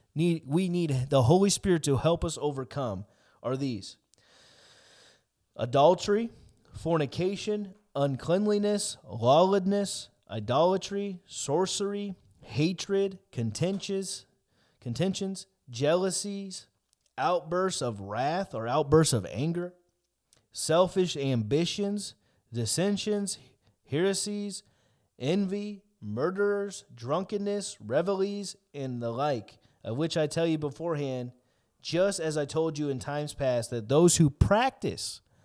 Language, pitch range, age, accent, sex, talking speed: English, 130-190 Hz, 30-49, American, male, 95 wpm